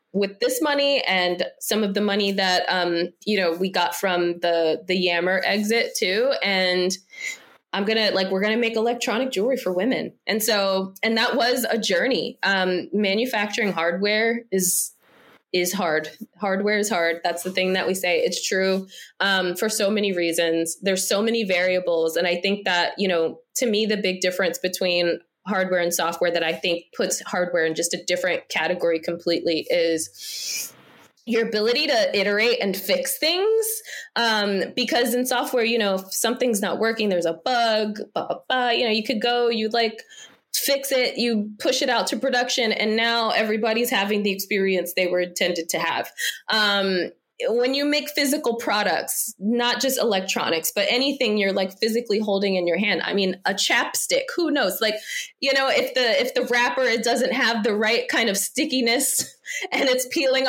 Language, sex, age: English, female, 20-39